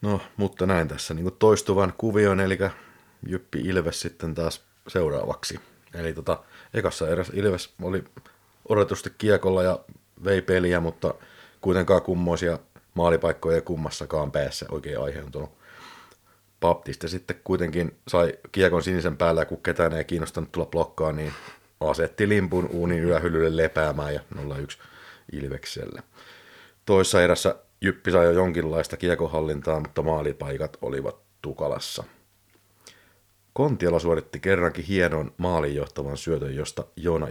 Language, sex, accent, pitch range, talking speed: Finnish, male, native, 80-95 Hz, 120 wpm